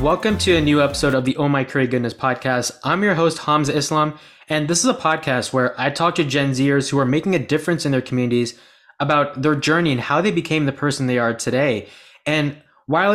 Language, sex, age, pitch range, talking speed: English, male, 20-39, 125-155 Hz, 230 wpm